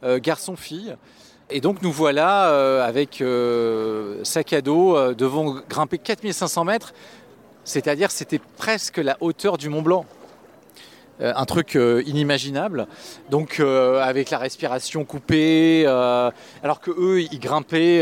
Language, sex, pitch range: French, male, 135-175 Hz